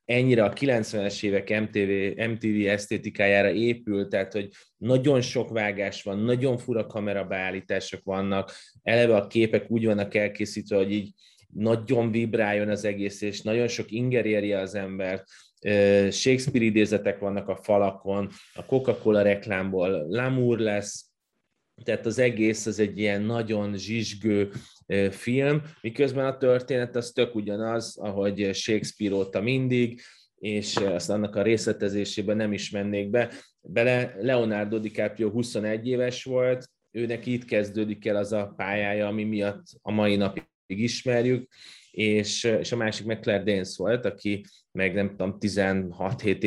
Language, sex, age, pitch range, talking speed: Hungarian, male, 20-39, 100-115 Hz, 135 wpm